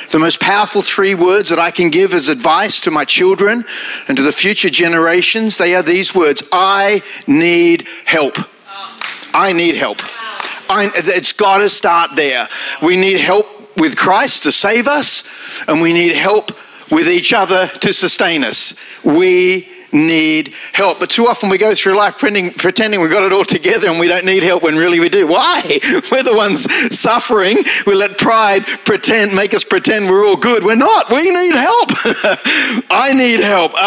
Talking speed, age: 180 wpm, 40-59